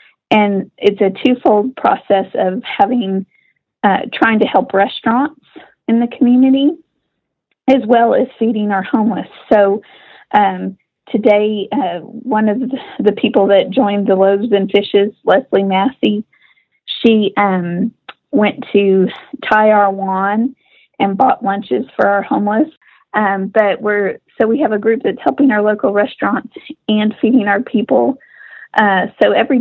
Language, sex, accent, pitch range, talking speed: English, female, American, 200-260 Hz, 140 wpm